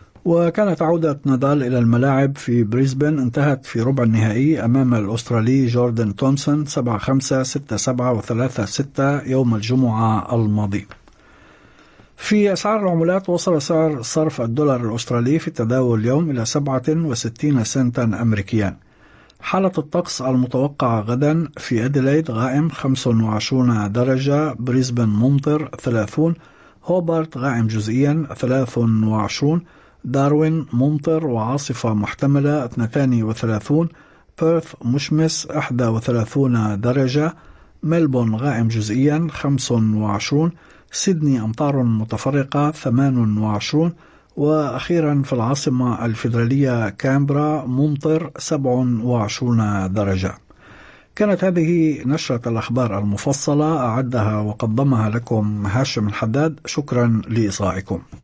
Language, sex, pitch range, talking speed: Arabic, male, 115-150 Hz, 100 wpm